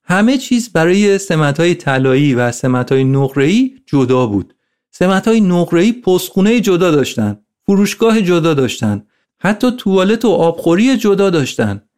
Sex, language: male, Persian